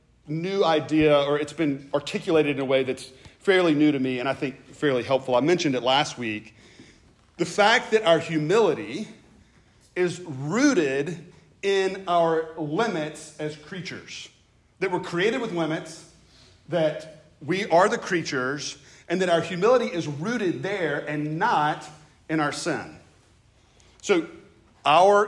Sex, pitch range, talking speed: male, 140-170 Hz, 140 wpm